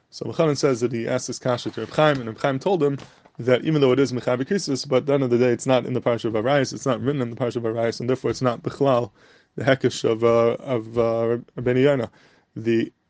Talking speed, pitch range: 250 wpm, 115-135 Hz